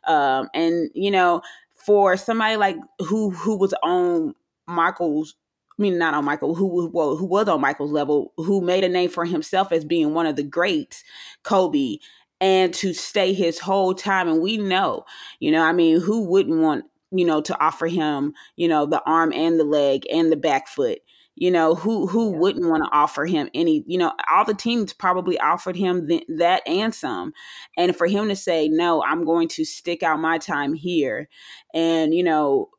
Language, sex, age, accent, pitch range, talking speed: English, female, 20-39, American, 165-210 Hz, 200 wpm